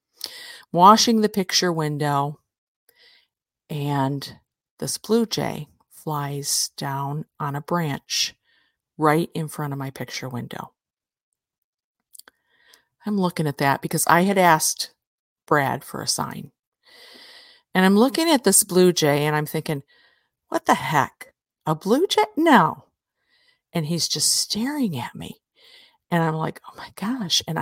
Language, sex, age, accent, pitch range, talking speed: English, female, 50-69, American, 155-230 Hz, 135 wpm